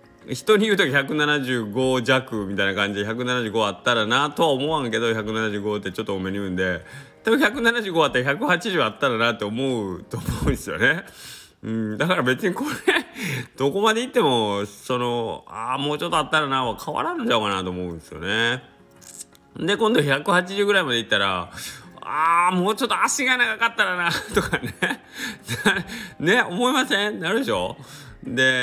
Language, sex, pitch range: Japanese, male, 105-175 Hz